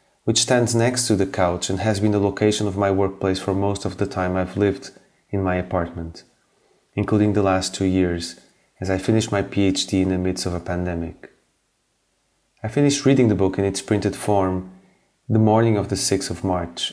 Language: English